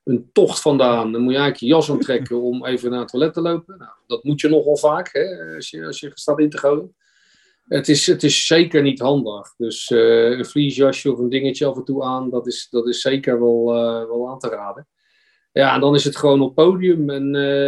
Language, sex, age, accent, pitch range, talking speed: Dutch, male, 40-59, Dutch, 125-155 Hz, 240 wpm